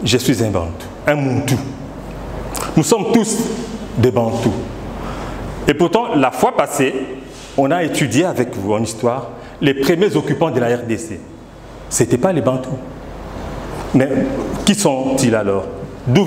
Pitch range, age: 125-160 Hz, 40-59